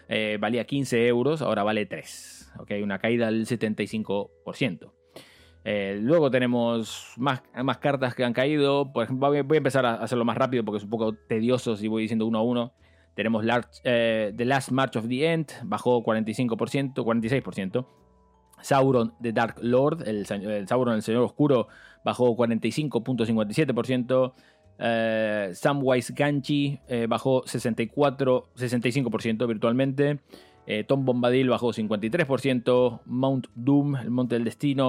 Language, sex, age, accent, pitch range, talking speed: Spanish, male, 20-39, Argentinian, 110-130 Hz, 135 wpm